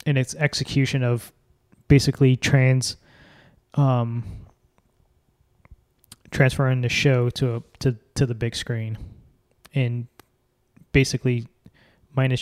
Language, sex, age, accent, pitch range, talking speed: English, male, 20-39, American, 120-135 Hz, 95 wpm